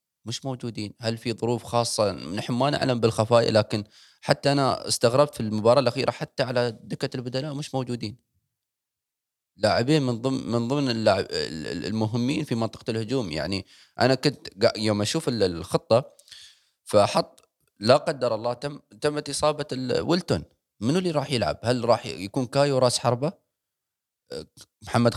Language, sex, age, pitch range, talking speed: Arabic, male, 20-39, 105-140 Hz, 145 wpm